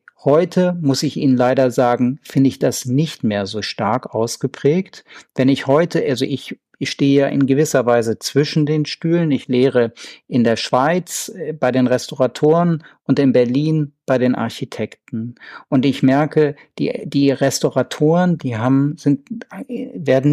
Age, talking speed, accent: 50-69, 155 wpm, German